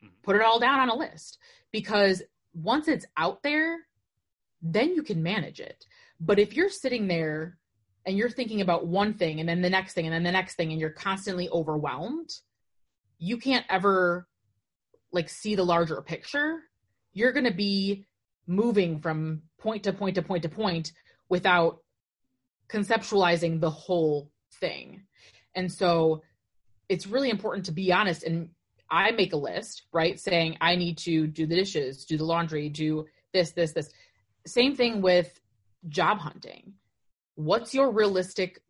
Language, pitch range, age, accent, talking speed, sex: English, 160-200 Hz, 20-39, American, 160 wpm, female